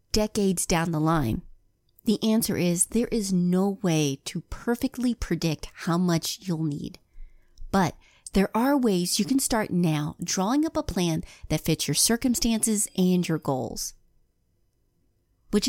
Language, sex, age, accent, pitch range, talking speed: English, female, 30-49, American, 170-235 Hz, 145 wpm